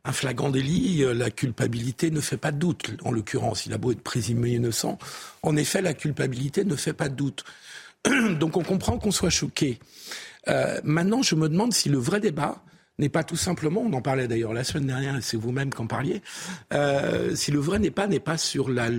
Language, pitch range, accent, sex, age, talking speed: French, 135-175 Hz, French, male, 50-69, 220 wpm